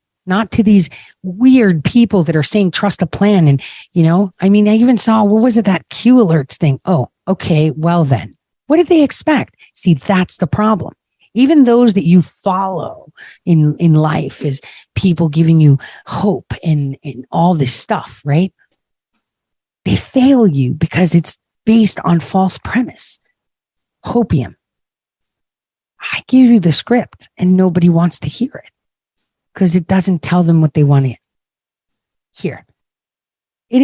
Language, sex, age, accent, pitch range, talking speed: English, female, 40-59, American, 155-205 Hz, 160 wpm